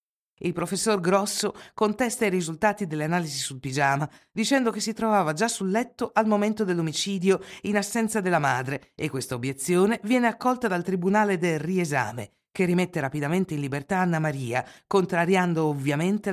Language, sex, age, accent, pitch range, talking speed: Italian, female, 50-69, native, 145-205 Hz, 155 wpm